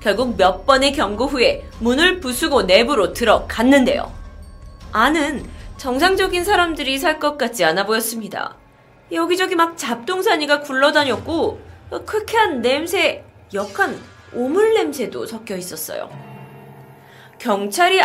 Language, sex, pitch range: Korean, female, 195-310 Hz